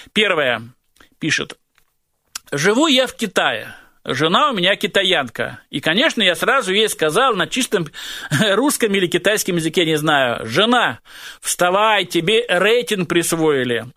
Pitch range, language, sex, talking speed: 165-230 Hz, Russian, male, 125 wpm